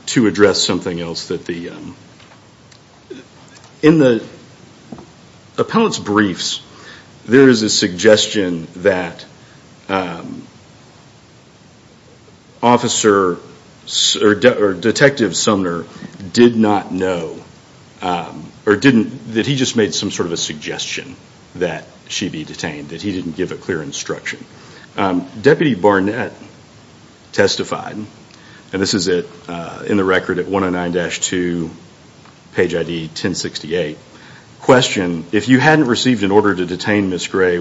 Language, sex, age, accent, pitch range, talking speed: English, male, 40-59, American, 90-110 Hz, 120 wpm